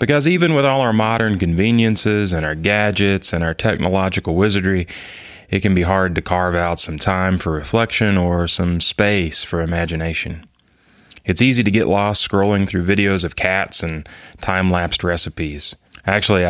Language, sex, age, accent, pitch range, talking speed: English, male, 30-49, American, 85-100 Hz, 160 wpm